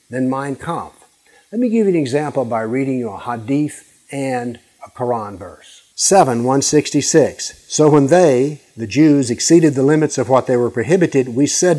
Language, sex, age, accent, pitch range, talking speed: English, male, 50-69, American, 115-150 Hz, 180 wpm